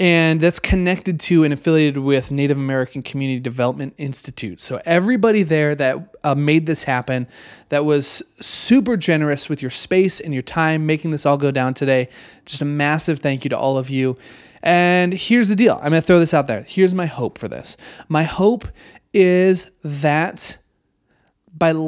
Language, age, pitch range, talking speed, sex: English, 30-49, 135-170 Hz, 180 wpm, male